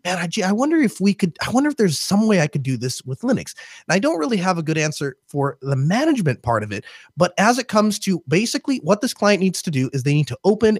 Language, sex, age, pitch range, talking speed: English, male, 30-49, 145-205 Hz, 280 wpm